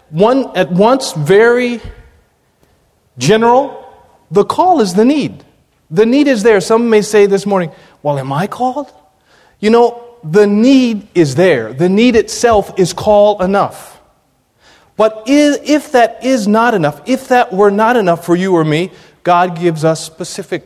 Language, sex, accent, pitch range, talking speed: English, male, American, 150-210 Hz, 160 wpm